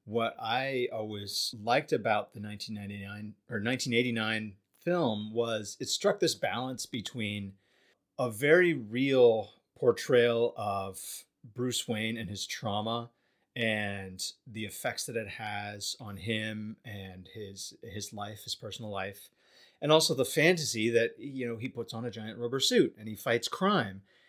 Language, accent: English, American